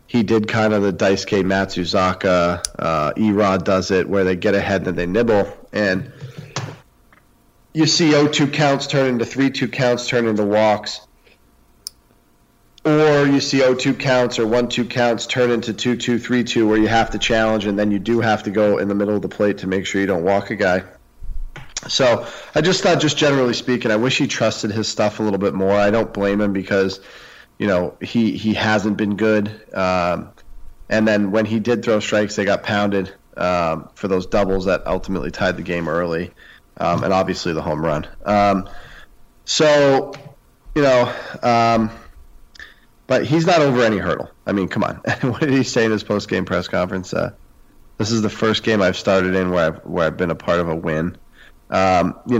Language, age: English, 40-59